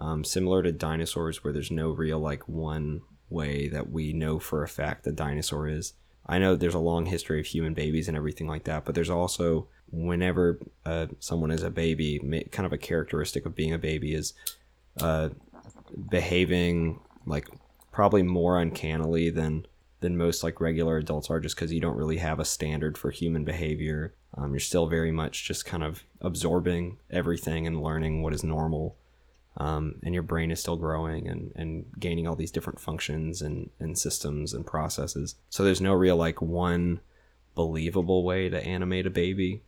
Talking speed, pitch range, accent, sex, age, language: 185 wpm, 75-85 Hz, American, male, 20-39, English